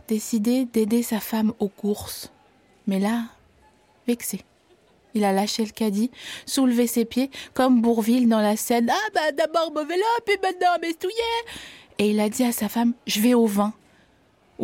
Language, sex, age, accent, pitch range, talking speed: French, female, 20-39, French, 190-230 Hz, 180 wpm